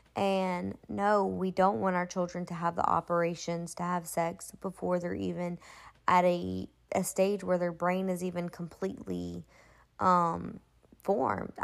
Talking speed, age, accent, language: 150 wpm, 20-39, American, English